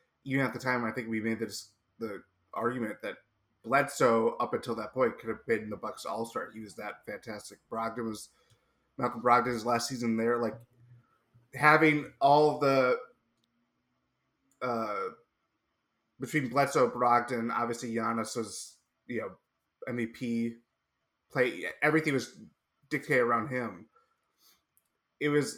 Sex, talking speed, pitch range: male, 130 wpm, 115-135 Hz